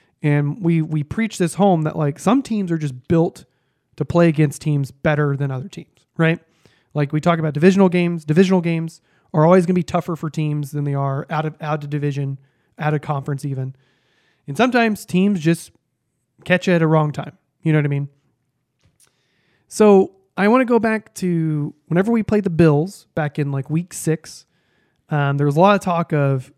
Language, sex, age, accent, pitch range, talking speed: English, male, 30-49, American, 145-185 Hz, 205 wpm